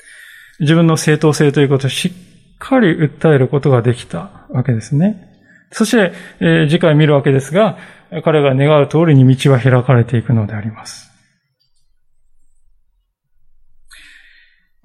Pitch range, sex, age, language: 130-185 Hz, male, 20-39, Japanese